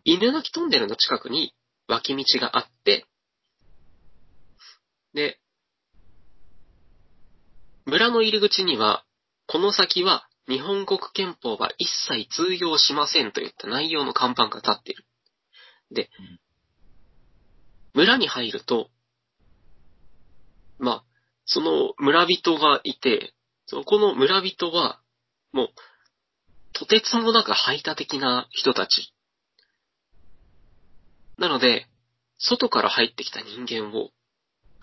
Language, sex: Japanese, male